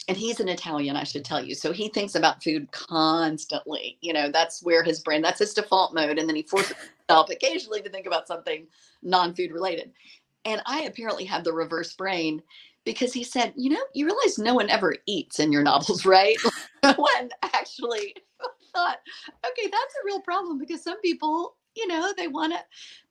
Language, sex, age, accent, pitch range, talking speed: English, female, 50-69, American, 165-245 Hz, 195 wpm